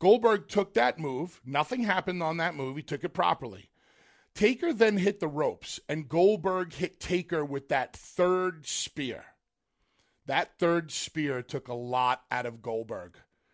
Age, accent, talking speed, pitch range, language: 40-59, American, 155 wpm, 135-175 Hz, English